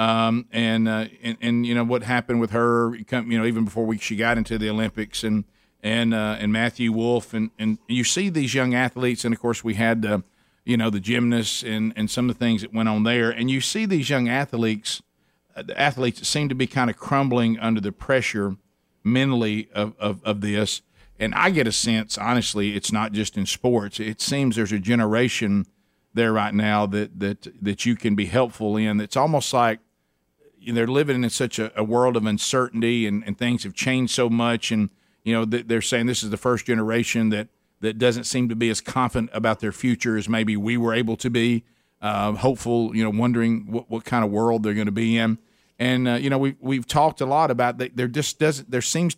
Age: 50-69